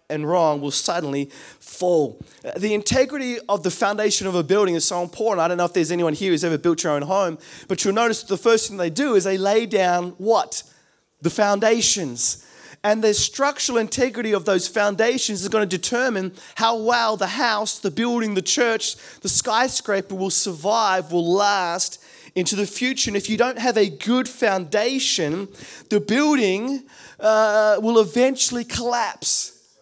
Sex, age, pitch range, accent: male, 20-39, 180-235 Hz, Australian